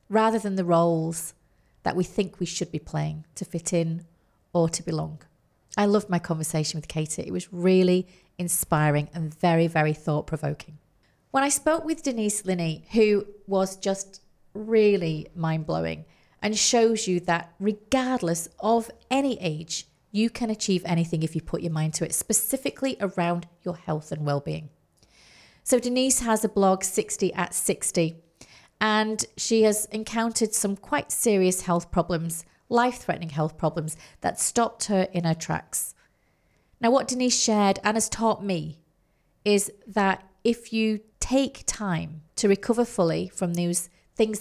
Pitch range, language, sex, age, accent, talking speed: 165-215 Hz, English, female, 30-49, British, 155 wpm